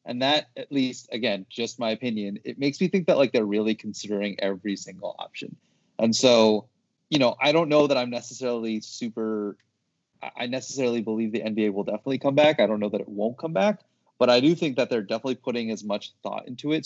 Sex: male